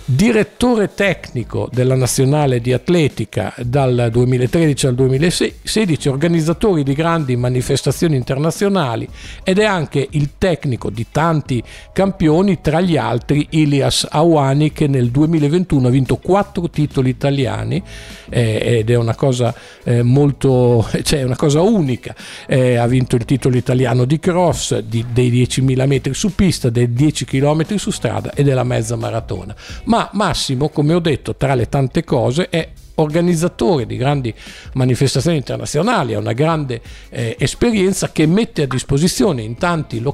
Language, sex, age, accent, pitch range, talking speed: Italian, male, 50-69, native, 120-155 Hz, 140 wpm